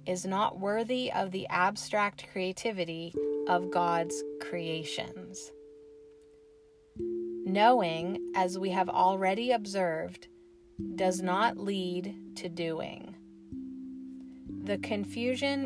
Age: 30-49